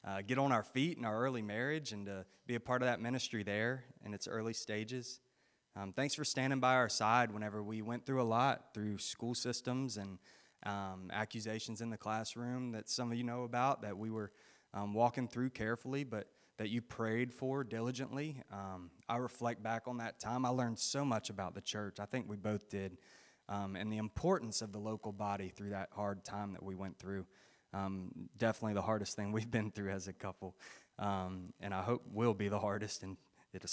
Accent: American